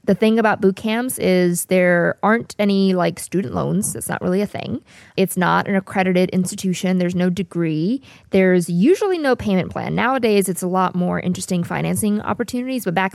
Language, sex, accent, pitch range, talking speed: English, female, American, 180-230 Hz, 185 wpm